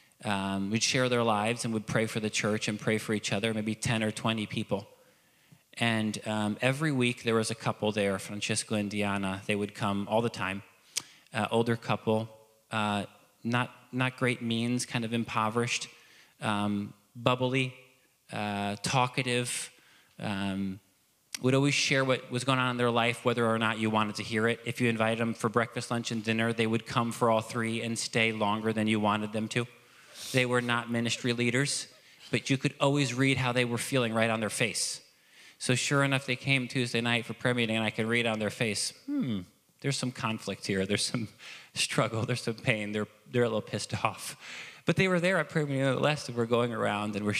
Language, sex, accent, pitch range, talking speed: English, male, American, 105-125 Hz, 205 wpm